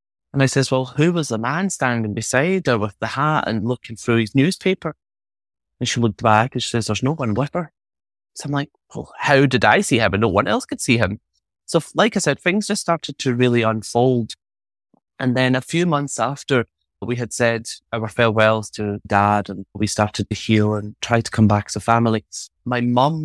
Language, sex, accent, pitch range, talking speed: English, male, British, 105-125 Hz, 220 wpm